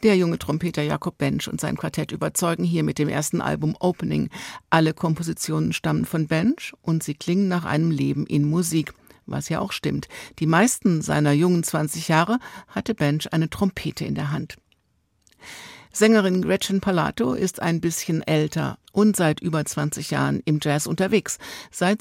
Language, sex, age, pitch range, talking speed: German, female, 60-79, 150-185 Hz, 165 wpm